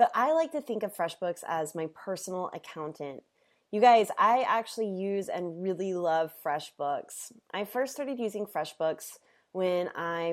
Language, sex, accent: English, female, American